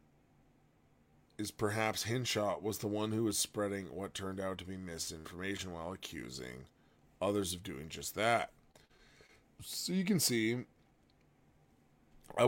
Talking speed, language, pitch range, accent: 130 wpm, English, 90-115 Hz, American